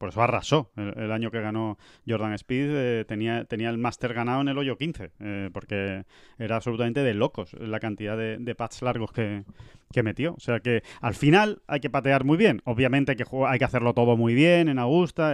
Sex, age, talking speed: male, 20-39, 215 wpm